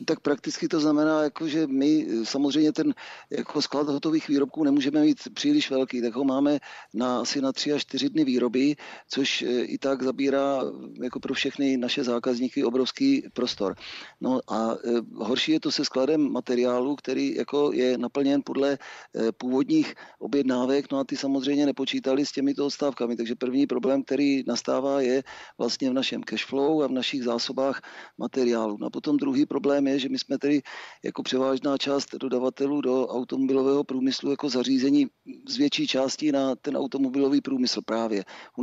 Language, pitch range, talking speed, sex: Czech, 130-145 Hz, 165 wpm, male